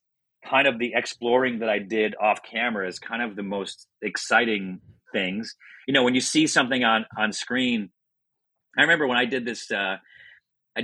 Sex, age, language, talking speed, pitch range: male, 40-59, English, 185 wpm, 105-125 Hz